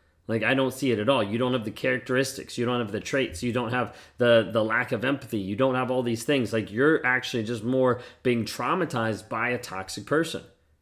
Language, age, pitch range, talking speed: English, 30-49, 115-135 Hz, 235 wpm